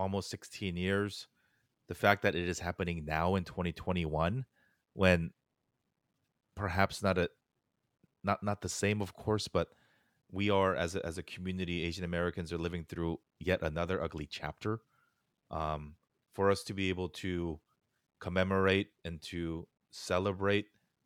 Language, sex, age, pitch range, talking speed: English, male, 30-49, 85-95 Hz, 140 wpm